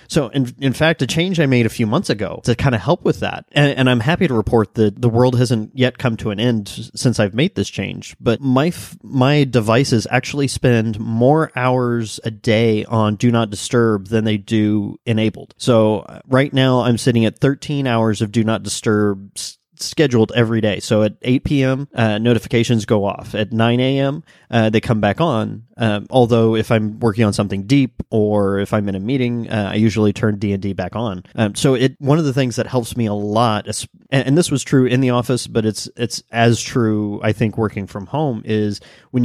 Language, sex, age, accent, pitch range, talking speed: English, male, 30-49, American, 110-130 Hz, 220 wpm